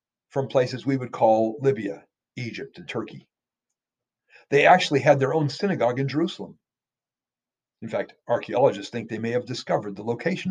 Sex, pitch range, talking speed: male, 120-150 Hz, 155 wpm